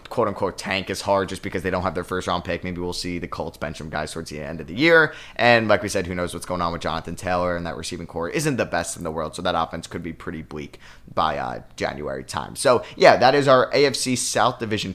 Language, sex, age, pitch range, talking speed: English, male, 20-39, 90-125 Hz, 275 wpm